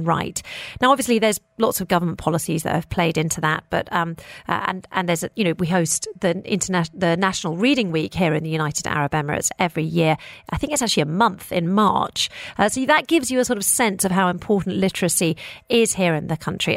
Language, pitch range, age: English, 170-240 Hz, 40-59